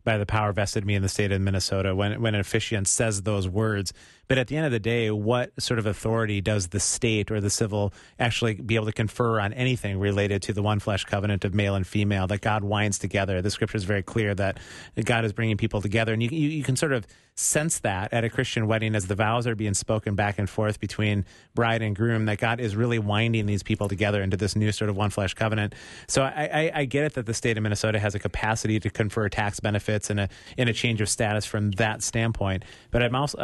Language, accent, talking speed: English, American, 250 wpm